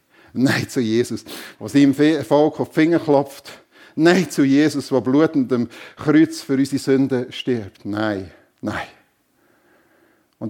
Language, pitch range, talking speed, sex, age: German, 115-140 Hz, 130 wpm, male, 50-69